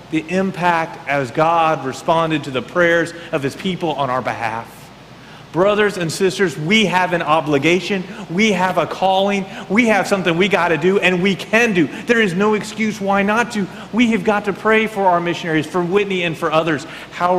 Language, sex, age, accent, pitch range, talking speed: English, male, 40-59, American, 165-215 Hz, 195 wpm